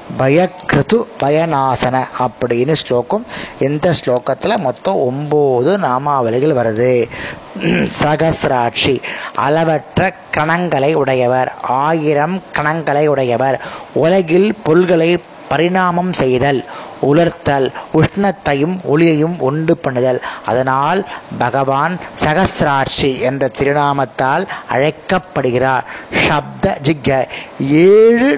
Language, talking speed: Tamil, 75 wpm